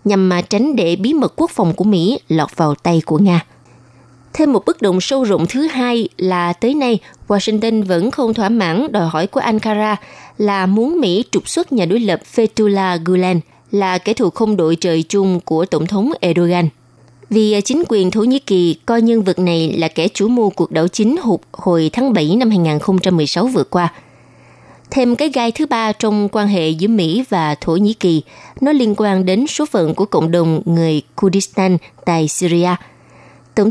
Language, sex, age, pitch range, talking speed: Vietnamese, female, 20-39, 170-225 Hz, 195 wpm